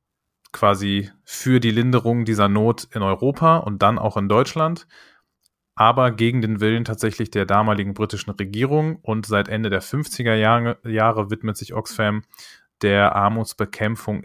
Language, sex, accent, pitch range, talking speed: German, male, German, 100-115 Hz, 145 wpm